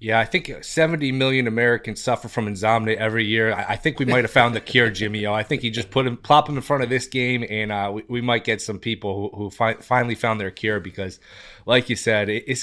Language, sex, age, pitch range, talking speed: English, male, 20-39, 110-140 Hz, 250 wpm